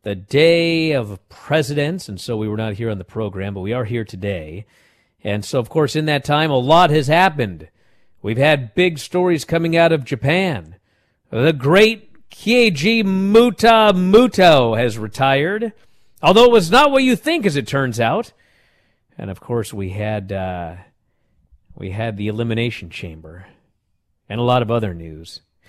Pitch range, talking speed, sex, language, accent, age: 110-165 Hz, 165 wpm, male, English, American, 50-69